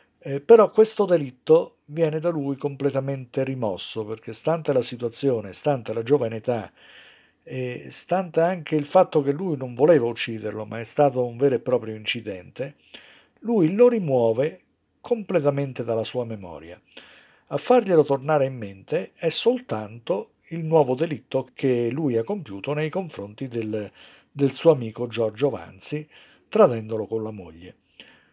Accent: native